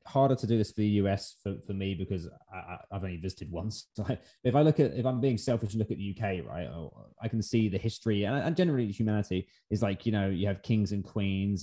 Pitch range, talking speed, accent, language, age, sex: 95-115 Hz, 260 wpm, British, English, 20-39, male